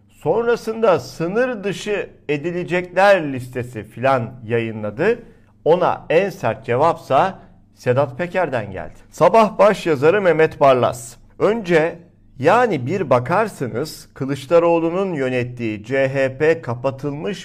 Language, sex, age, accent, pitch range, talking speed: Turkish, male, 50-69, native, 125-165 Hz, 95 wpm